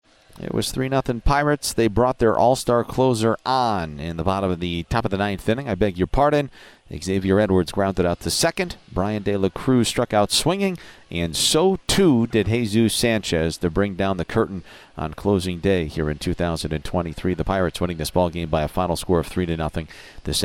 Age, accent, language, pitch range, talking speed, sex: 40-59, American, English, 90-120 Hz, 195 wpm, male